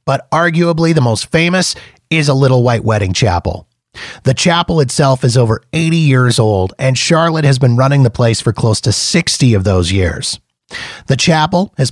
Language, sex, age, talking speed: English, male, 30-49, 180 wpm